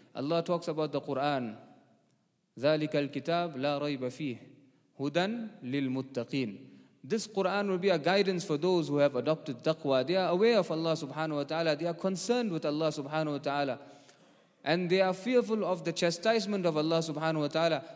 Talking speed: 150 wpm